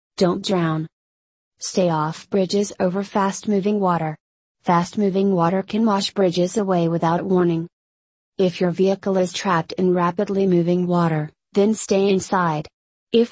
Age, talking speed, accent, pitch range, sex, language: 30-49, 130 wpm, American, 170-200 Hz, female, English